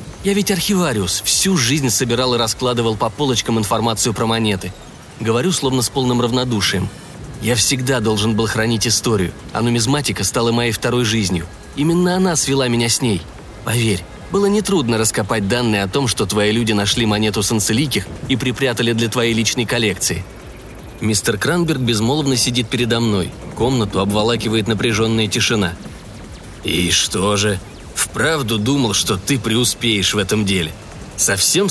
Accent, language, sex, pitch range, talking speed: native, Russian, male, 105-130 Hz, 145 wpm